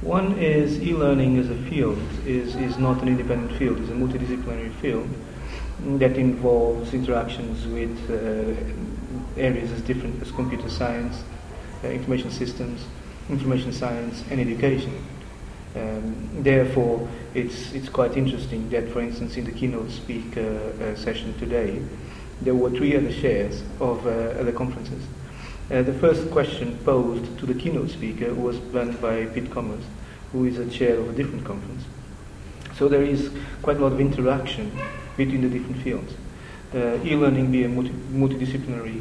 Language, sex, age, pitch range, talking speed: German, male, 40-59, 110-130 Hz, 150 wpm